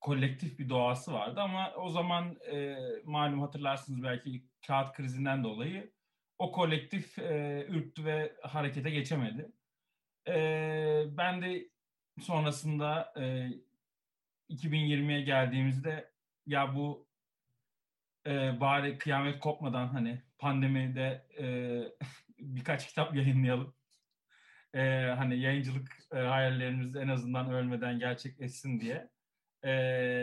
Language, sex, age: Turkish, male, 40-59